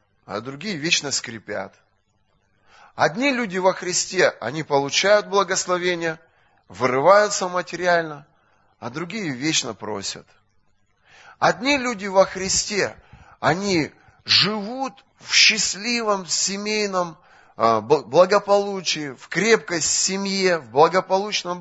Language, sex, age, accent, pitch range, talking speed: Russian, male, 20-39, native, 135-205 Hz, 90 wpm